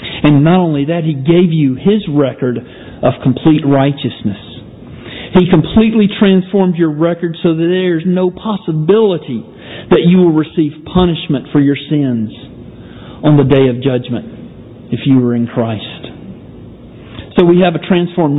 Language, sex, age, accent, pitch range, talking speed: English, male, 50-69, American, 130-175 Hz, 150 wpm